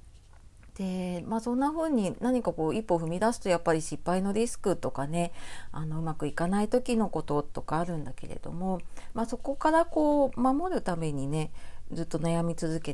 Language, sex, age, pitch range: Japanese, female, 40-59, 155-245 Hz